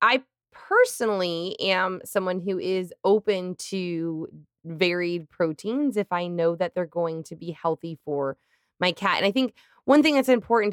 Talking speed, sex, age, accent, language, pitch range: 160 wpm, female, 20-39, American, English, 165-200 Hz